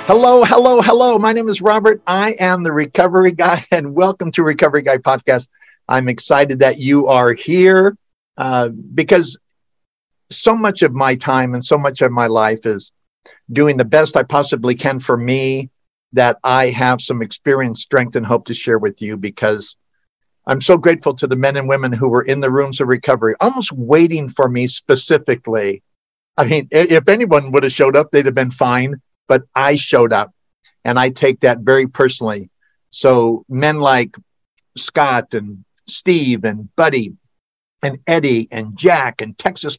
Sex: male